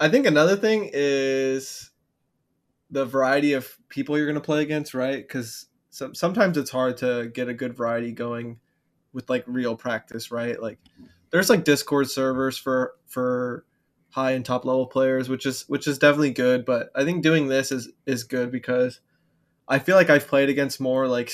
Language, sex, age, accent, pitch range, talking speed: English, male, 20-39, American, 125-140 Hz, 185 wpm